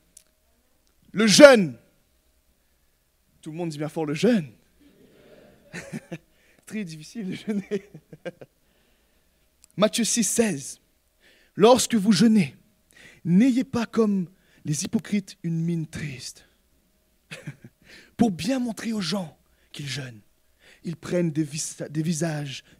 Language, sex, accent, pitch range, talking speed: French, male, French, 150-225 Hz, 110 wpm